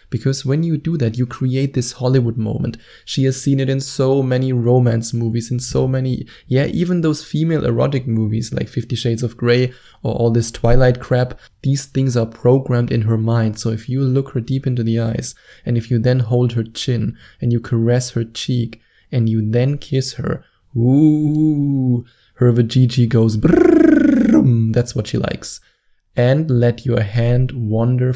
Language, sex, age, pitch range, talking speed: English, male, 20-39, 115-130 Hz, 180 wpm